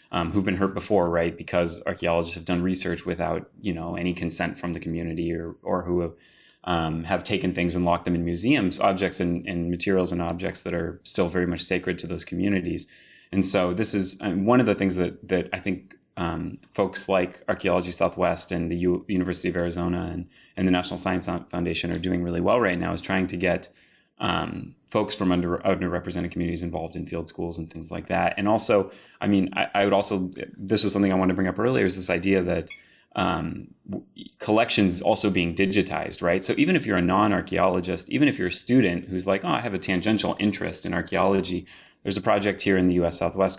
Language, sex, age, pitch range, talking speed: English, male, 30-49, 85-95 Hz, 220 wpm